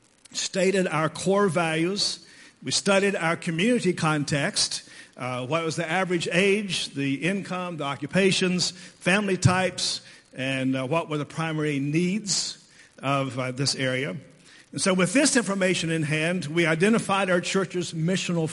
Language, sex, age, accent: English, male, 50-69, American